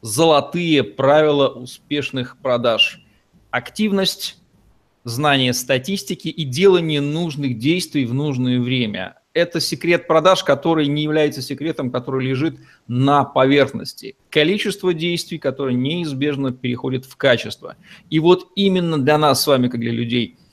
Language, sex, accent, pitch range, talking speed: Russian, male, native, 125-160 Hz, 125 wpm